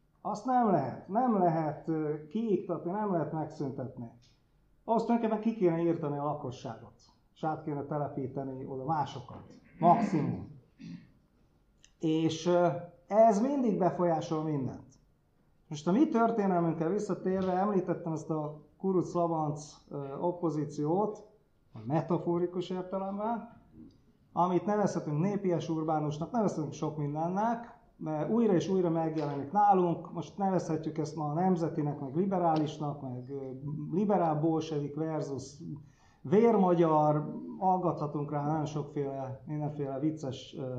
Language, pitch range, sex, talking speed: Hungarian, 145-185 Hz, male, 105 wpm